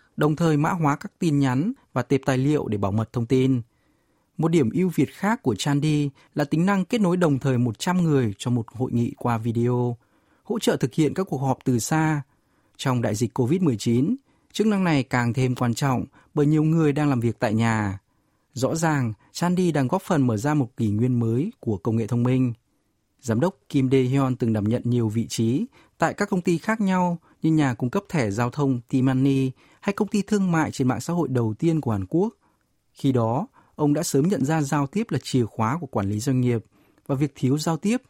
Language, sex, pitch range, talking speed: Vietnamese, male, 120-165 Hz, 225 wpm